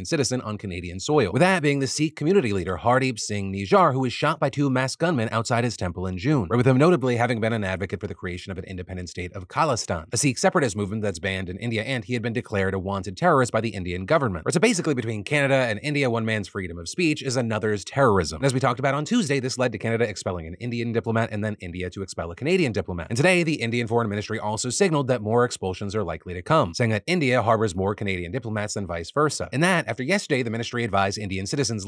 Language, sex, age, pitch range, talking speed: English, male, 30-49, 100-140 Hz, 255 wpm